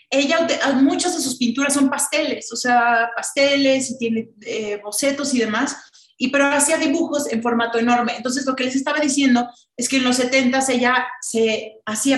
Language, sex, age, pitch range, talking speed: Spanish, female, 30-49, 230-275 Hz, 180 wpm